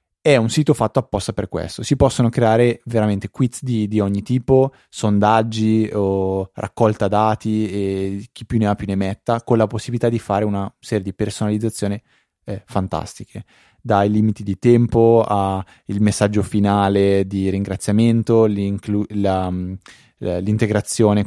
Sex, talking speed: male, 140 wpm